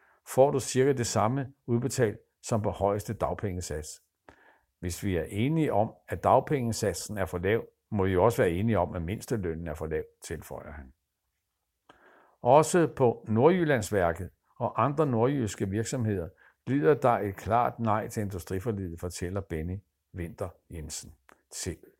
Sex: male